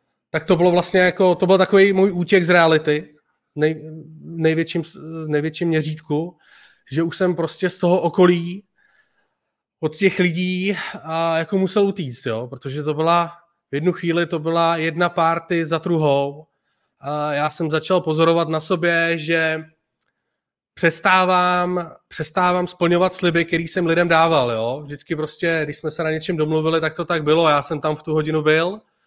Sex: male